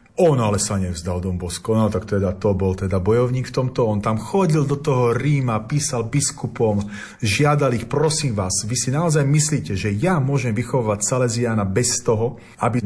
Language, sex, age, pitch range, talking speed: Slovak, male, 40-59, 105-140 Hz, 180 wpm